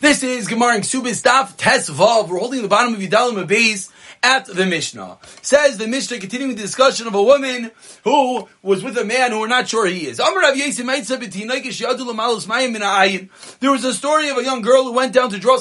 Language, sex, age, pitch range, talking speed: English, male, 30-49, 200-270 Hz, 190 wpm